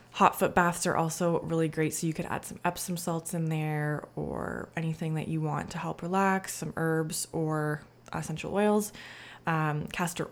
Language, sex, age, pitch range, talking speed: English, female, 20-39, 155-175 Hz, 180 wpm